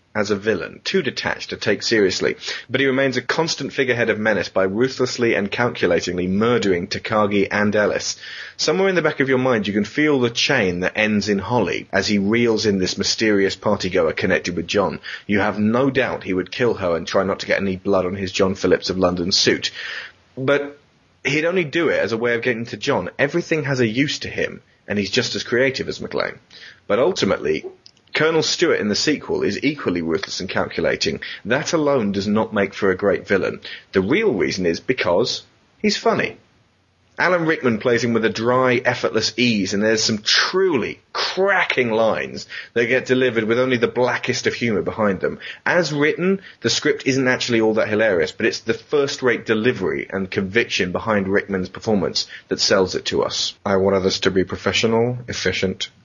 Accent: British